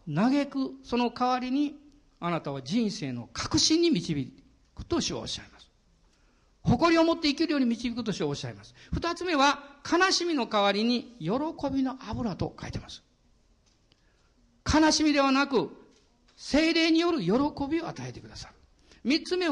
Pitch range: 200-285 Hz